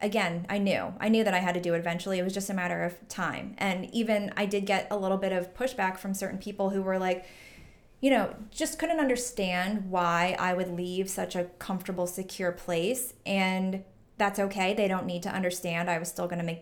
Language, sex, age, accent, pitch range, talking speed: English, female, 20-39, American, 180-210 Hz, 230 wpm